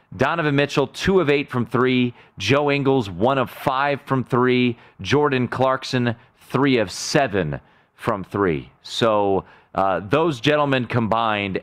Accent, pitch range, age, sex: American, 110-145 Hz, 30-49, male